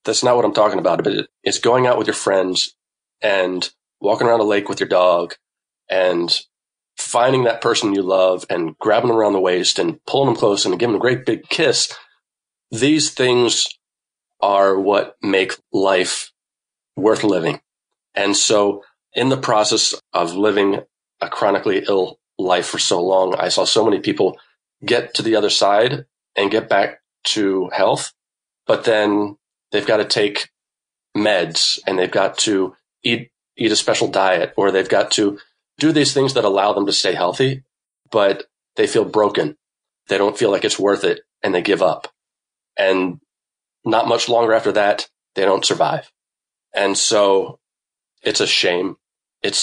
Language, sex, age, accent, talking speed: English, male, 40-59, American, 170 wpm